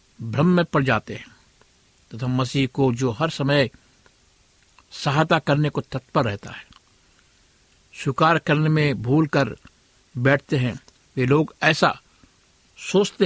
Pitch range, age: 120-150 Hz, 60-79